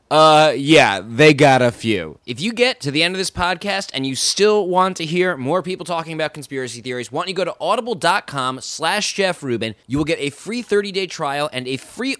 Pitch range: 140-210 Hz